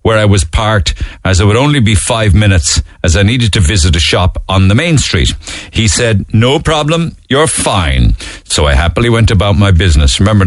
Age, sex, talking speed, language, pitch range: 60-79, male, 205 wpm, English, 80-110 Hz